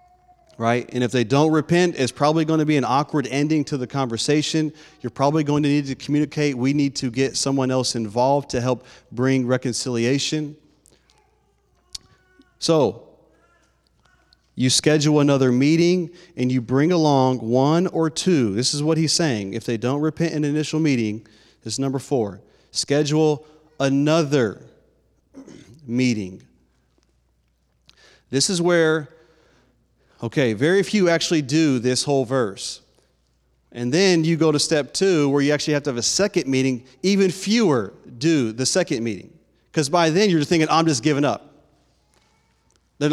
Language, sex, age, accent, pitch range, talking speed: English, male, 30-49, American, 125-165 Hz, 155 wpm